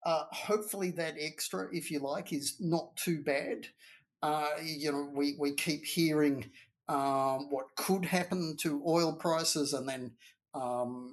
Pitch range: 140-155 Hz